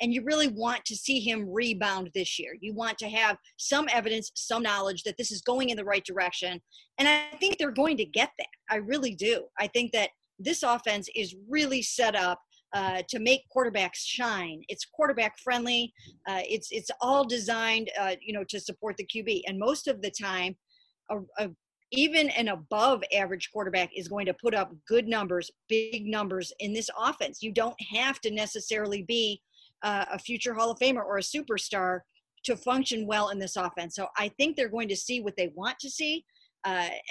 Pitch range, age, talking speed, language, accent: 195-250 Hz, 40-59, 200 wpm, English, American